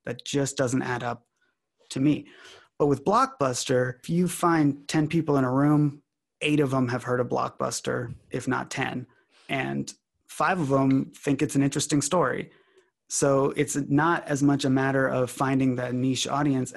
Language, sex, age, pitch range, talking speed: English, male, 30-49, 130-145 Hz, 175 wpm